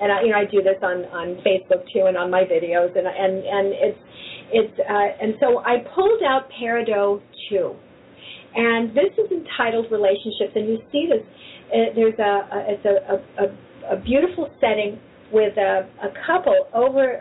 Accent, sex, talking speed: American, female, 180 wpm